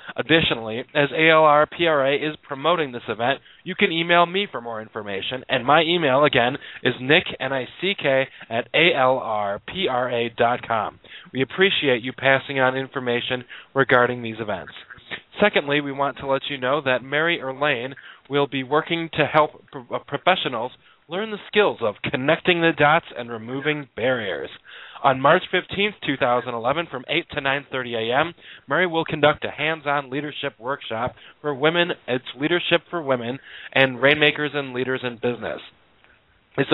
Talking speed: 140 wpm